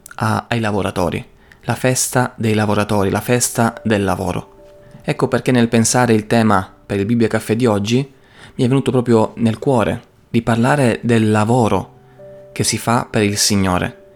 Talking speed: 160 wpm